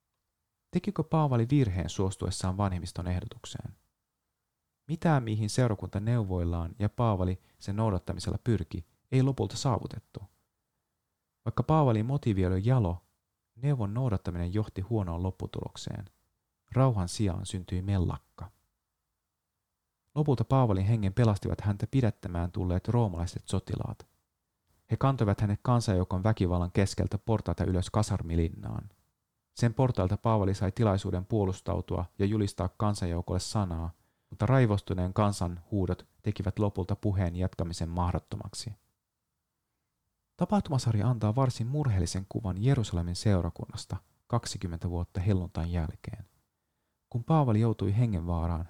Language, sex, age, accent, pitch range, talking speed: Finnish, male, 30-49, native, 90-115 Hz, 105 wpm